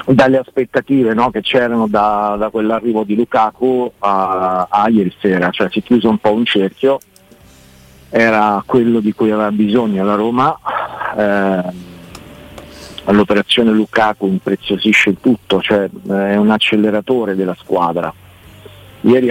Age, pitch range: 50-69, 95-110 Hz